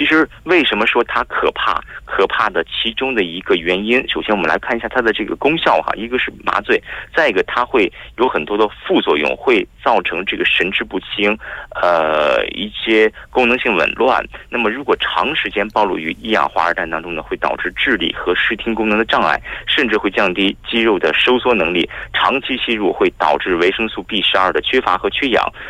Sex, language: male, Korean